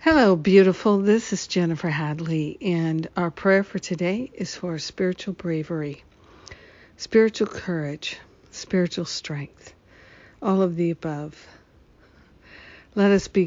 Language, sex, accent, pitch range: English, female, American, 165-185 Hz